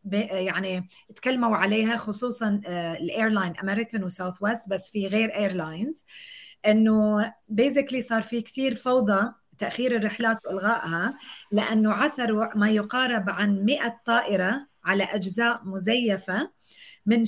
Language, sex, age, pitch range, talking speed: Arabic, female, 30-49, 200-250 Hz, 110 wpm